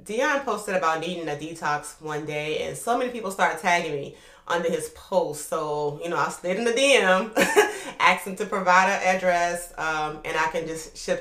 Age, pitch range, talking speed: 30-49, 165-205 Hz, 205 wpm